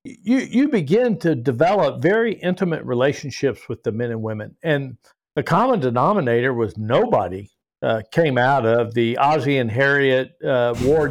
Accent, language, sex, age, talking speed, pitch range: American, English, male, 60-79, 155 wpm, 130-165 Hz